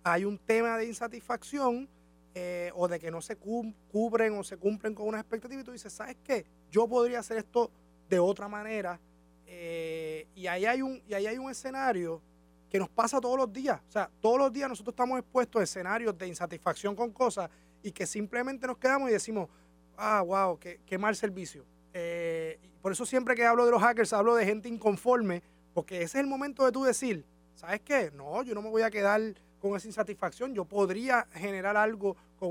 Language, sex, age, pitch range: Spanish, male, 30-49, 175-235 Hz